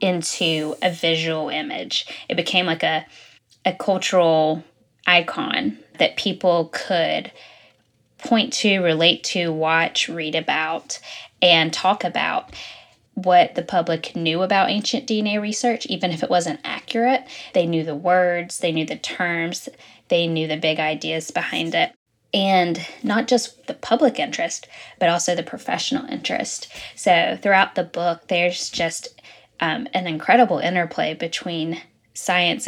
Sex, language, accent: female, English, American